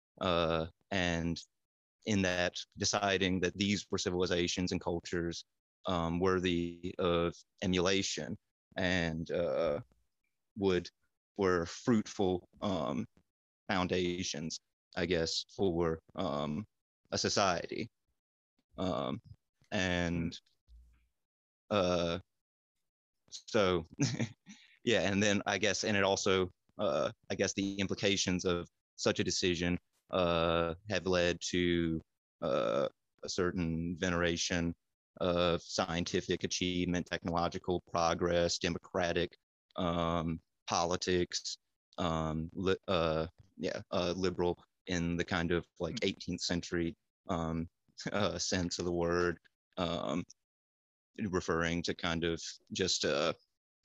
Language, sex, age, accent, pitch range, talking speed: English, male, 30-49, American, 85-95 Hz, 100 wpm